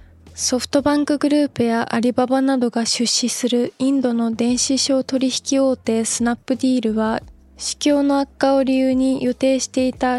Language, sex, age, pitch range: Japanese, female, 20-39, 225-265 Hz